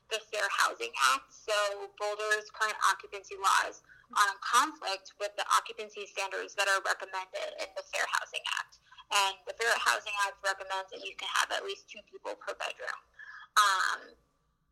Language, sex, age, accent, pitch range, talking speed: English, female, 20-39, American, 200-245 Hz, 165 wpm